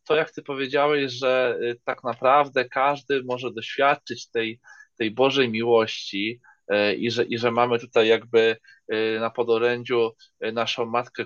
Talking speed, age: 135 wpm, 20-39